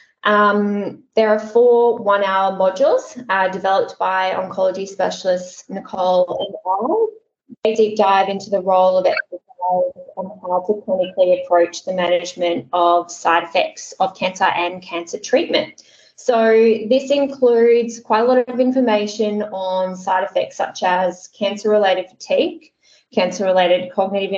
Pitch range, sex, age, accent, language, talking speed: 180-220 Hz, female, 20-39, Australian, English, 130 wpm